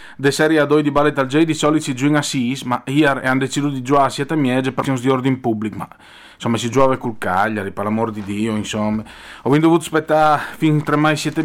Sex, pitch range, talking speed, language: male, 120-145 Hz, 230 wpm, Italian